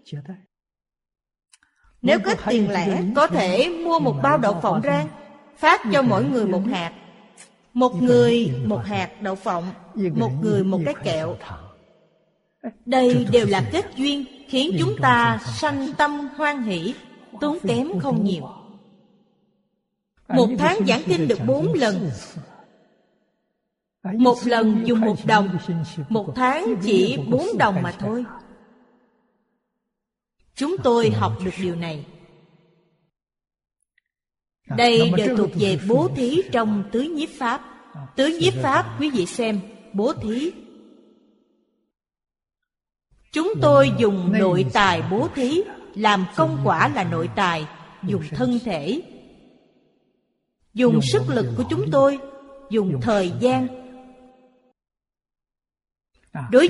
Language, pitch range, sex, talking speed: Vietnamese, 185-250 Hz, female, 120 wpm